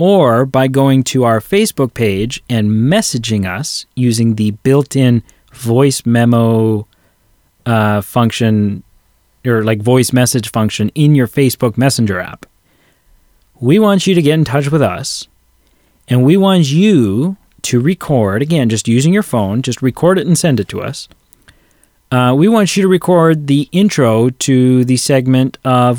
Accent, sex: American, male